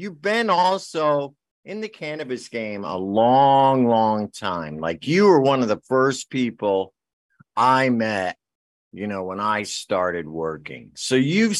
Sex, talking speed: male, 150 wpm